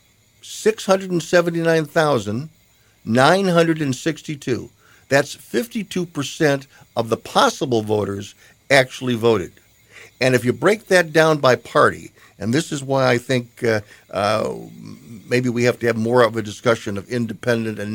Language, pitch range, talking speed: English, 110-155 Hz, 125 wpm